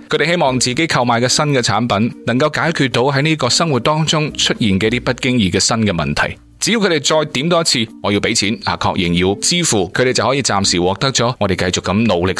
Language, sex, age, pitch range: Chinese, male, 20-39, 105-145 Hz